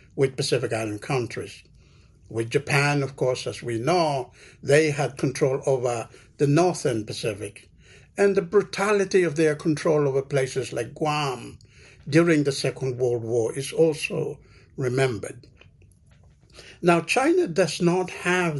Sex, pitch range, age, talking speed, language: male, 130-170 Hz, 60-79, 130 wpm, English